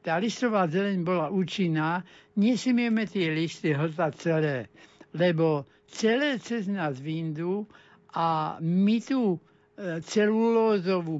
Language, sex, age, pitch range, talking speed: Slovak, male, 60-79, 160-195 Hz, 100 wpm